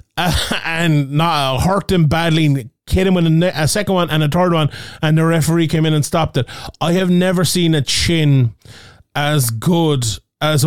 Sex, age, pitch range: male, 20-39, 140-170 Hz